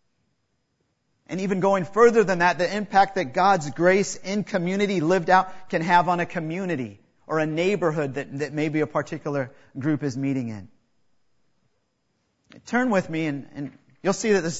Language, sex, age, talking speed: English, male, 40-59, 170 wpm